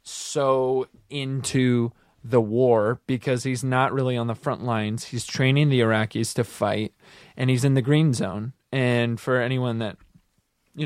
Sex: male